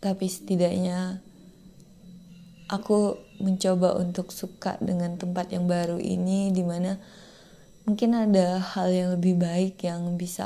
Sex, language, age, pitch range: female, Indonesian, 20-39, 175-190 Hz